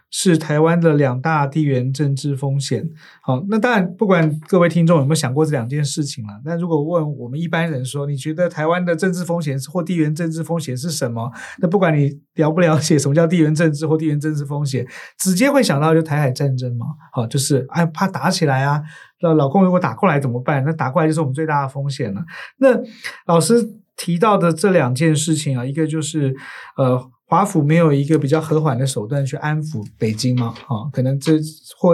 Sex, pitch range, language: male, 140-170 Hz, Chinese